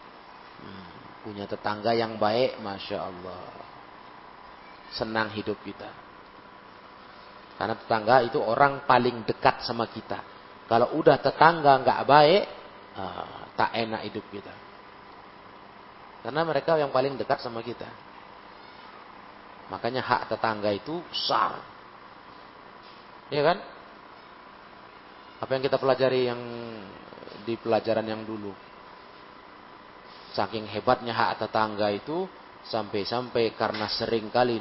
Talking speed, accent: 100 wpm, native